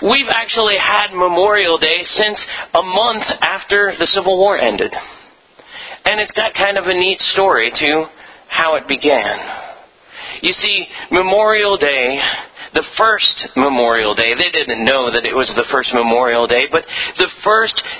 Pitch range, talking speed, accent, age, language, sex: 140-195 Hz, 155 wpm, American, 40-59, English, male